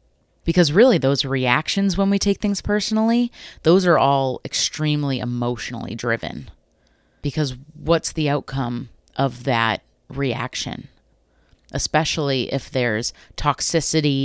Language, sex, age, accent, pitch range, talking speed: English, female, 30-49, American, 120-165 Hz, 110 wpm